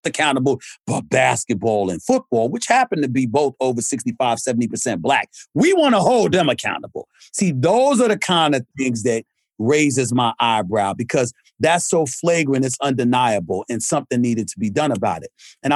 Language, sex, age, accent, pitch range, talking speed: English, male, 40-59, American, 130-155 Hz, 170 wpm